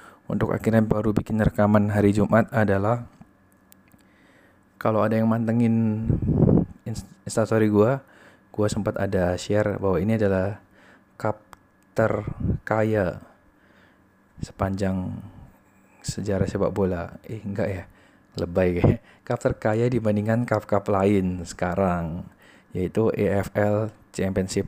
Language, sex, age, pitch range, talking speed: Indonesian, male, 20-39, 100-115 Hz, 100 wpm